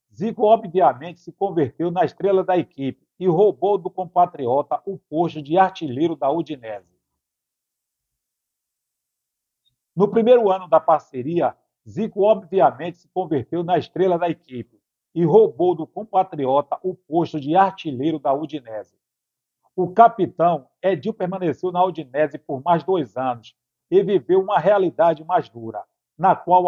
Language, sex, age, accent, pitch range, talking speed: Portuguese, male, 50-69, Brazilian, 140-190 Hz, 135 wpm